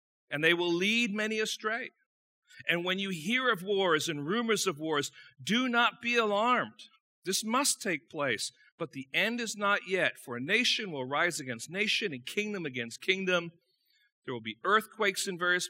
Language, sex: English, male